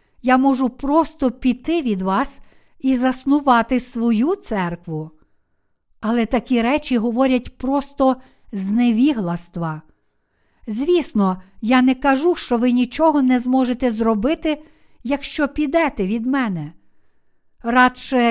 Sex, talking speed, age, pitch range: female, 100 wpm, 50-69, 215-270 Hz